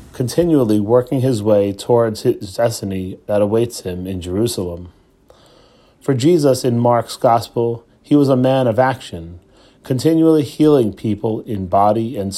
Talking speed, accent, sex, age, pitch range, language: 140 wpm, American, male, 30-49, 105-130 Hz, English